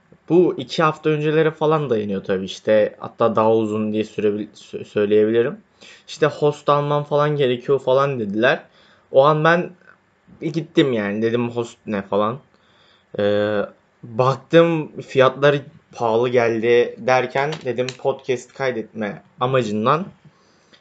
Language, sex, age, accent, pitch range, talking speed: Turkish, male, 20-39, native, 110-150 Hz, 115 wpm